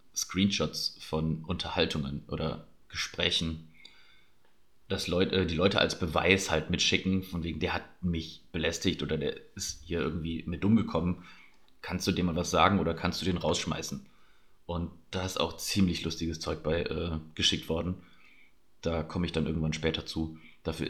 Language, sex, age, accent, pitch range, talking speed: German, male, 30-49, German, 80-95 Hz, 165 wpm